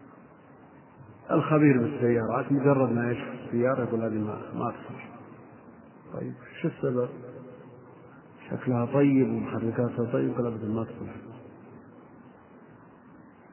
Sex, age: male, 50-69